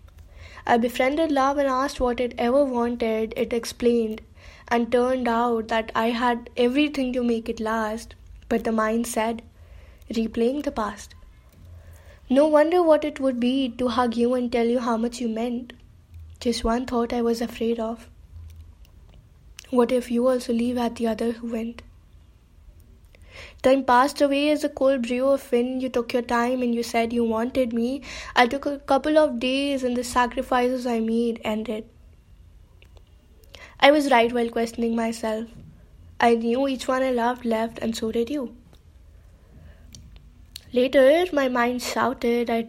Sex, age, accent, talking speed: female, 10-29, Indian, 160 wpm